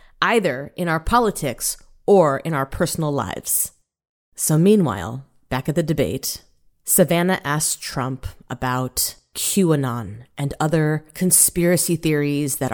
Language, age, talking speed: English, 30-49, 120 wpm